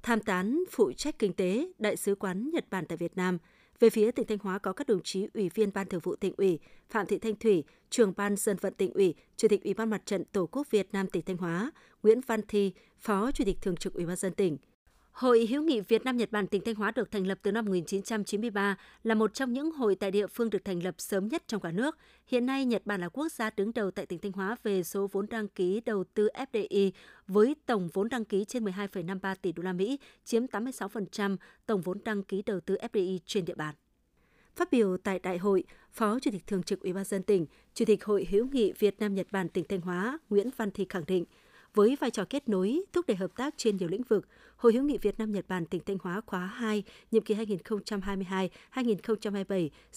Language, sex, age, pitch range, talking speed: Vietnamese, female, 20-39, 190-230 Hz, 240 wpm